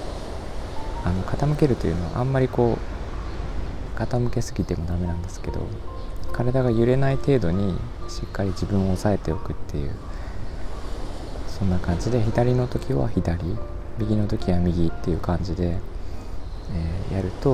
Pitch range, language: 85-105 Hz, Japanese